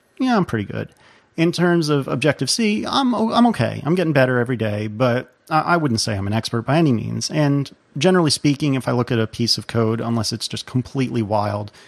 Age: 40-59